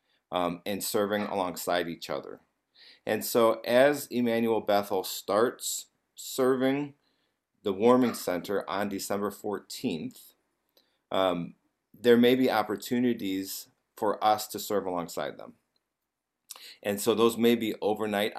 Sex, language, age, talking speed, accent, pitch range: male, English, 40-59, 120 wpm, American, 90-115 Hz